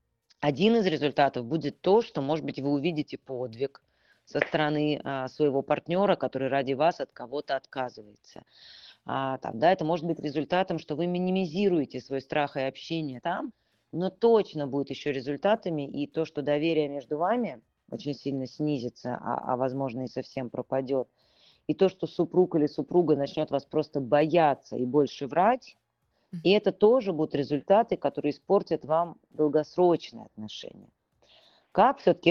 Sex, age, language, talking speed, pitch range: female, 30-49, Russian, 145 wpm, 140-175 Hz